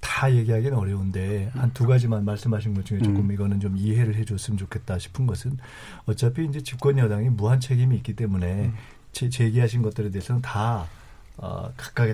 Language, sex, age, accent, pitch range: Korean, male, 40-59, native, 105-125 Hz